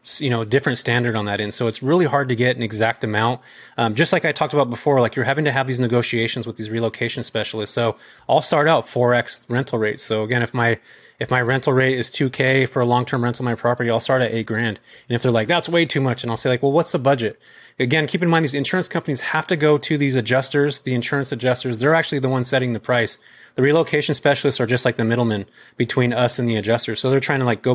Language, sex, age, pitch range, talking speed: English, male, 30-49, 115-135 Hz, 260 wpm